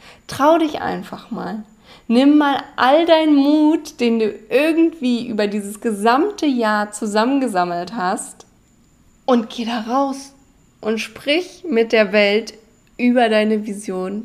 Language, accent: German, German